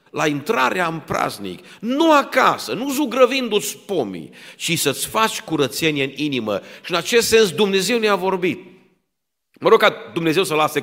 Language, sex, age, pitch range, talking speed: Romanian, male, 50-69, 160-230 Hz, 155 wpm